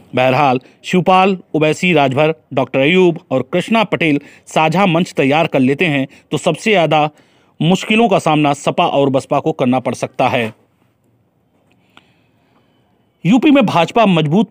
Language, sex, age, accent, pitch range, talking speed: Hindi, male, 40-59, native, 140-175 Hz, 135 wpm